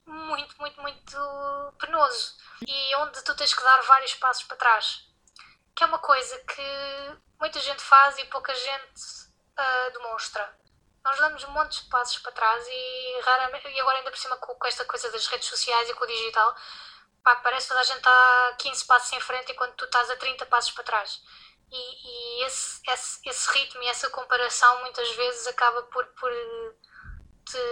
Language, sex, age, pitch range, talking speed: Portuguese, female, 20-39, 240-275 Hz, 190 wpm